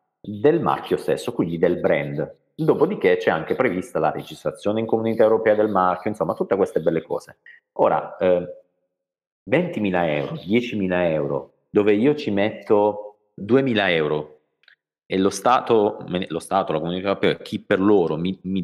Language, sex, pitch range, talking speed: Italian, male, 95-130 Hz, 150 wpm